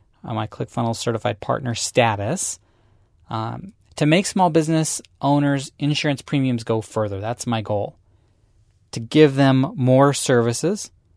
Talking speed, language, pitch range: 130 wpm, English, 105-140 Hz